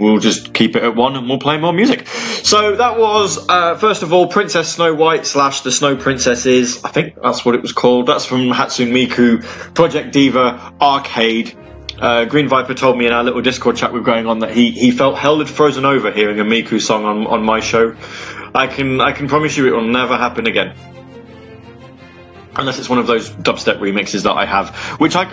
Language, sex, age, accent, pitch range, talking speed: English, male, 20-39, British, 120-185 Hz, 215 wpm